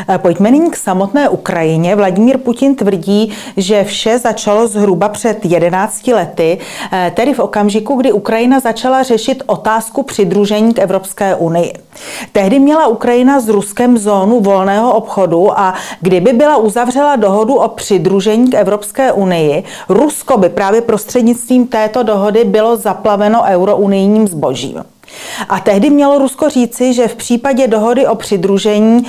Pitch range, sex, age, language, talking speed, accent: 195-240 Hz, female, 40-59, Czech, 135 wpm, native